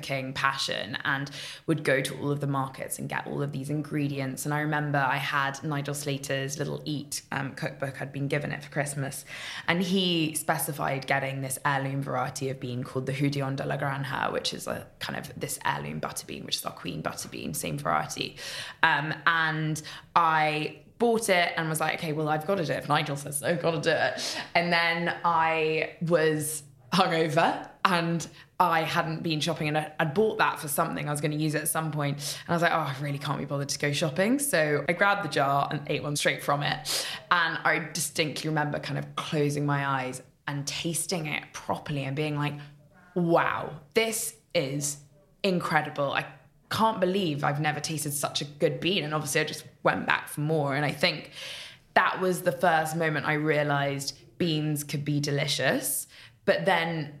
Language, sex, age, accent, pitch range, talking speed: English, female, 10-29, British, 140-165 Hz, 200 wpm